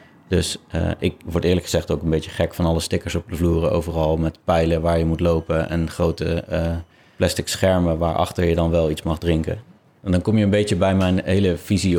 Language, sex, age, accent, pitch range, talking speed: Dutch, male, 30-49, Dutch, 85-95 Hz, 225 wpm